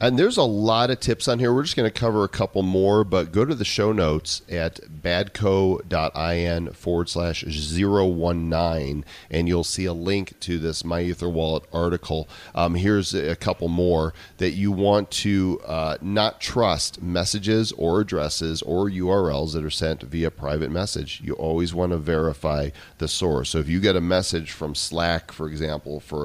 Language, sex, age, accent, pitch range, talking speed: English, male, 40-59, American, 80-100 Hz, 175 wpm